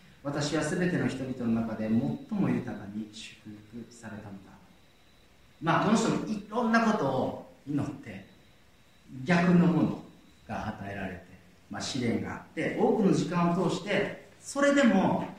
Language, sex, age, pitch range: Japanese, male, 40-59, 110-175 Hz